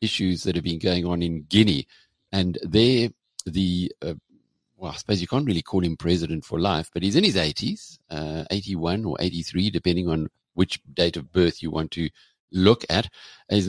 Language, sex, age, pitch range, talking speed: English, male, 50-69, 85-100 Hz, 195 wpm